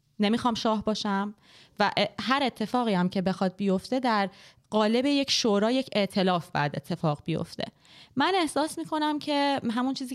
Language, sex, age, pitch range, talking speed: Persian, female, 20-39, 165-220 Hz, 150 wpm